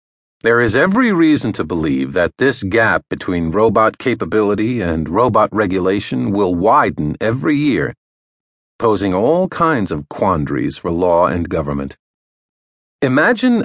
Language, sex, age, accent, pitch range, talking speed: English, male, 50-69, American, 95-135 Hz, 130 wpm